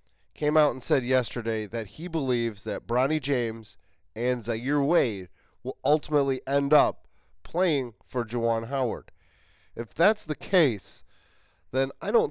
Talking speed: 140 wpm